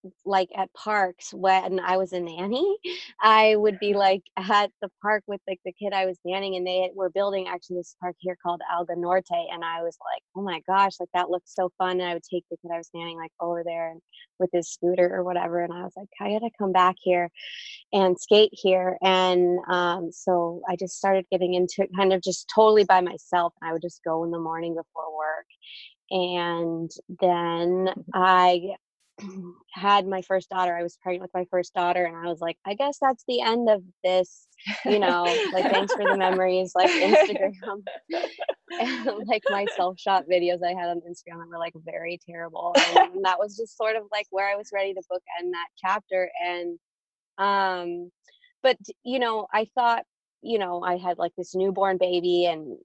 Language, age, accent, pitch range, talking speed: English, 20-39, American, 175-200 Hz, 200 wpm